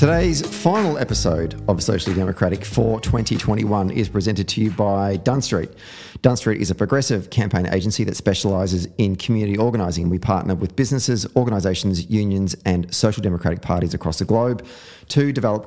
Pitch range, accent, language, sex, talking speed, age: 95-115 Hz, Australian, English, male, 155 wpm, 30-49